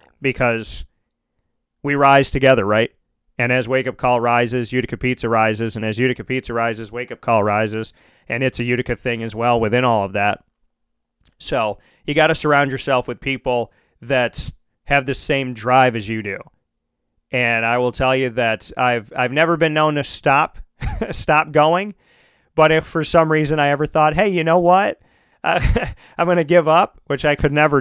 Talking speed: 185 wpm